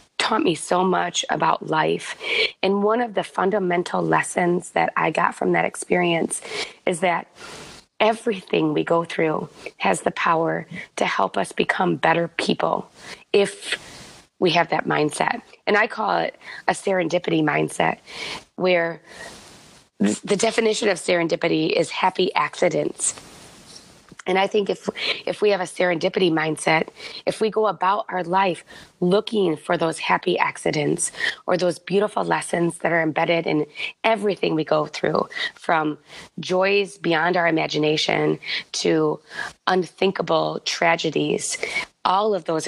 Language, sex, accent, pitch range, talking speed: English, female, American, 160-200 Hz, 135 wpm